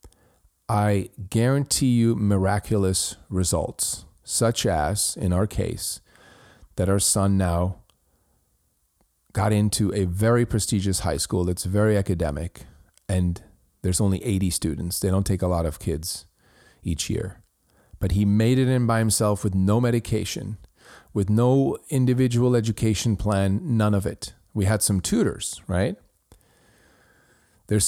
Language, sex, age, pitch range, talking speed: English, male, 40-59, 95-115 Hz, 135 wpm